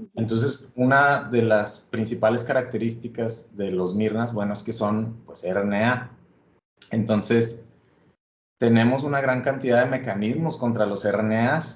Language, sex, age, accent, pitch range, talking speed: Spanish, male, 30-49, Mexican, 105-125 Hz, 130 wpm